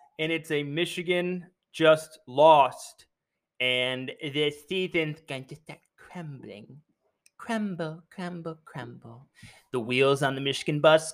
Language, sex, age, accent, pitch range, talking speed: English, male, 20-39, American, 140-205 Hz, 120 wpm